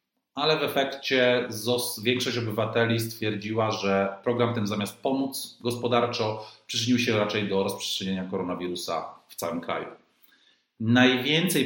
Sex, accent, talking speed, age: male, native, 120 wpm, 40-59